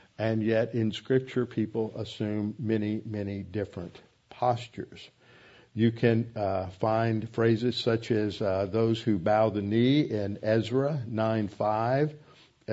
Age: 50-69